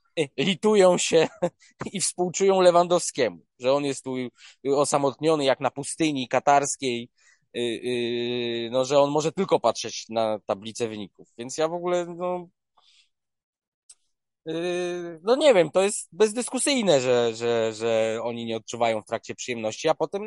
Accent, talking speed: native, 130 wpm